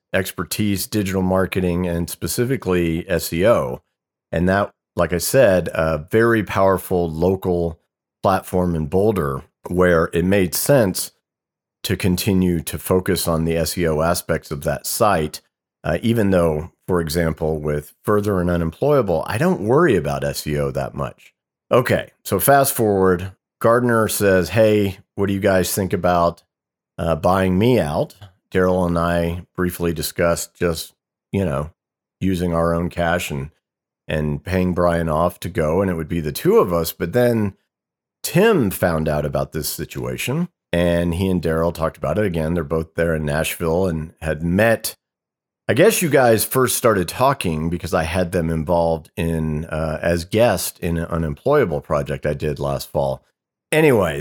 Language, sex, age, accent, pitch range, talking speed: English, male, 40-59, American, 80-95 Hz, 155 wpm